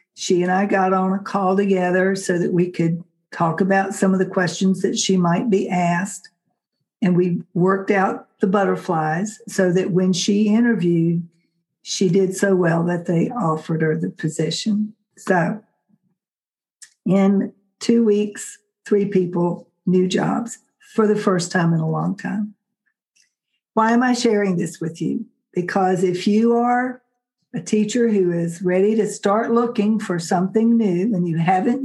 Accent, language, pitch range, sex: American, English, 180-215 Hz, female